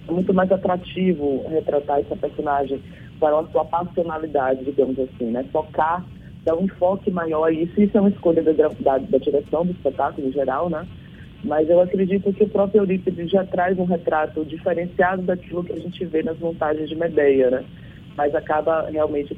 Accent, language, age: Brazilian, Portuguese, 20-39